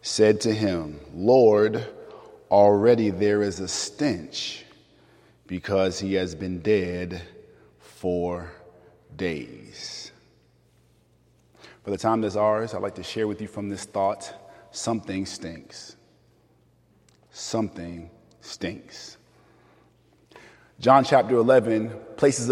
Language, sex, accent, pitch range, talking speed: English, male, American, 100-135 Hz, 100 wpm